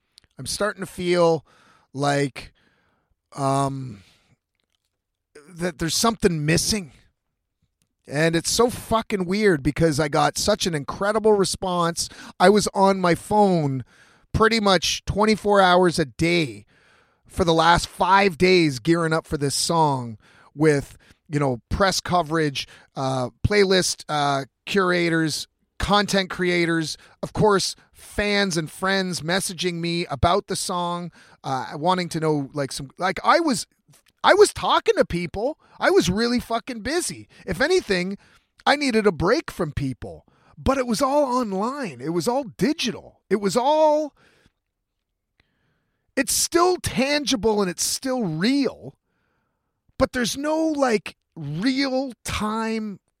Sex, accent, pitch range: male, American, 155-220 Hz